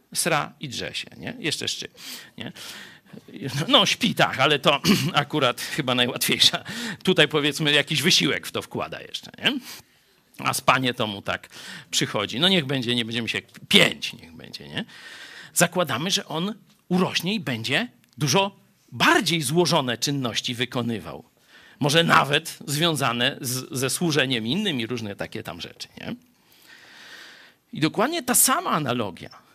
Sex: male